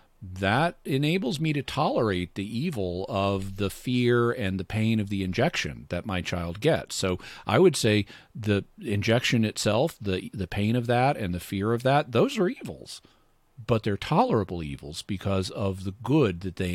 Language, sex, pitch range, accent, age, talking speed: English, male, 95-115 Hz, American, 40-59, 180 wpm